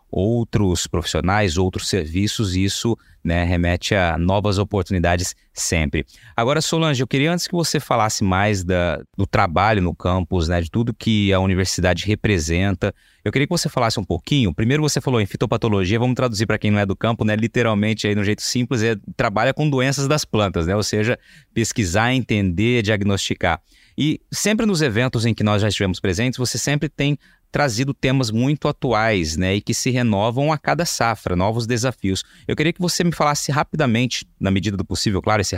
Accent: Brazilian